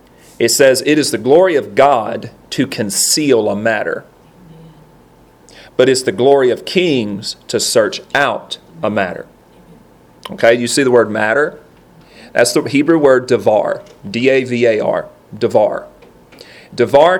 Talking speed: 130 wpm